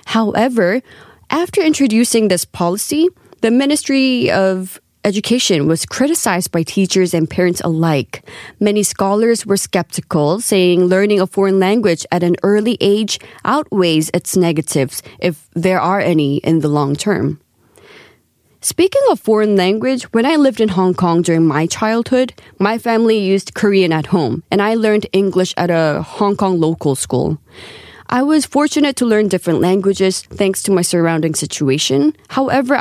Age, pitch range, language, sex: 20-39, 170-220 Hz, Korean, female